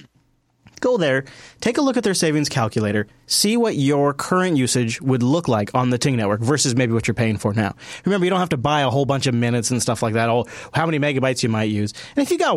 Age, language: 30-49, English